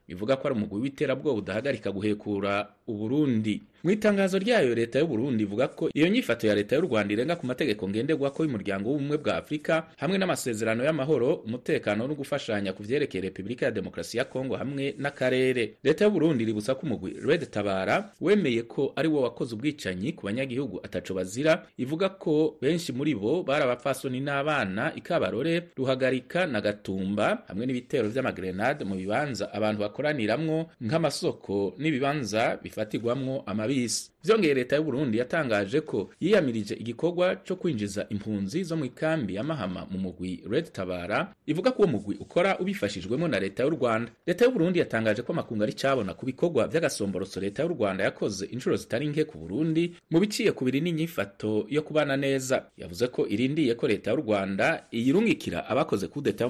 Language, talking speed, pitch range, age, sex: English, 155 wpm, 105-155 Hz, 30-49, male